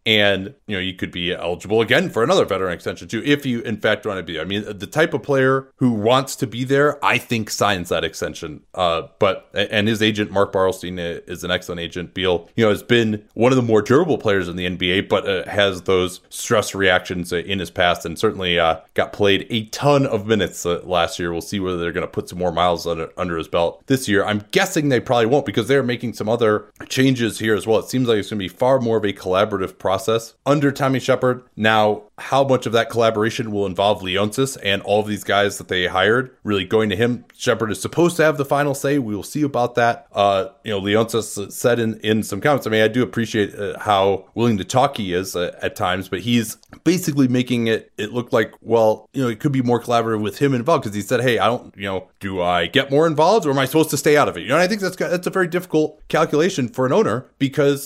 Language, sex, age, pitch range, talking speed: English, male, 30-49, 100-130 Hz, 250 wpm